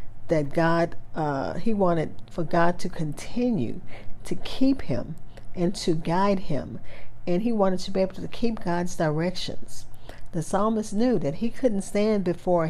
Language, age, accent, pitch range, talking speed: English, 50-69, American, 150-190 Hz, 160 wpm